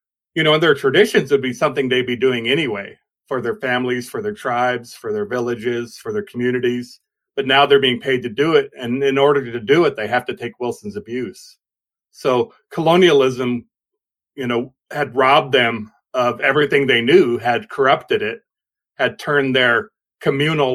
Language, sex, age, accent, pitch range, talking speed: English, male, 40-59, American, 125-175 Hz, 180 wpm